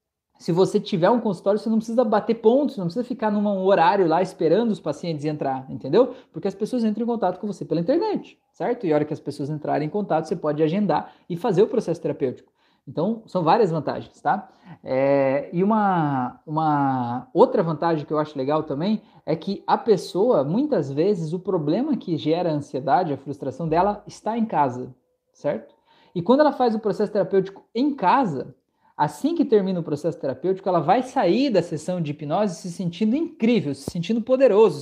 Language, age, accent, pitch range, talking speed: Portuguese, 20-39, Brazilian, 165-220 Hz, 195 wpm